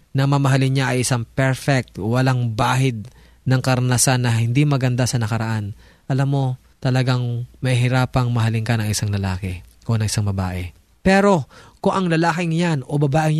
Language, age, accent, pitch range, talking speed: Filipino, 20-39, native, 120-160 Hz, 155 wpm